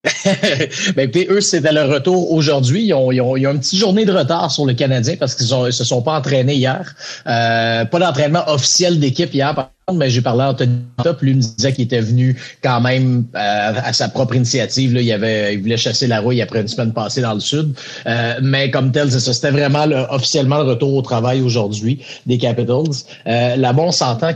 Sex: male